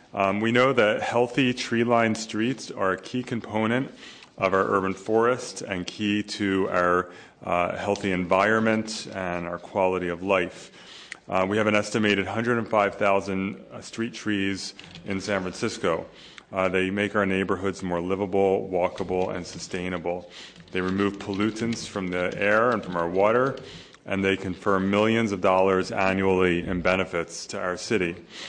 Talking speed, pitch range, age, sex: 145 wpm, 90-105 Hz, 30-49, male